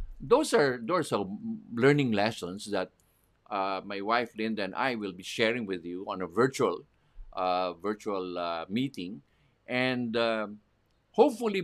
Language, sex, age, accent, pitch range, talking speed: English, male, 50-69, Filipino, 100-145 Hz, 145 wpm